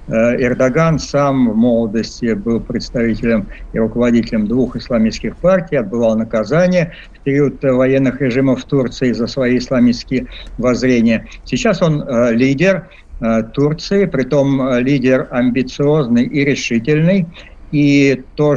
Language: Russian